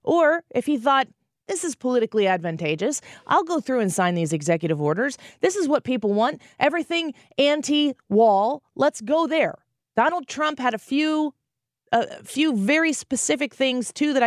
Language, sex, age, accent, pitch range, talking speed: English, female, 30-49, American, 175-275 Hz, 160 wpm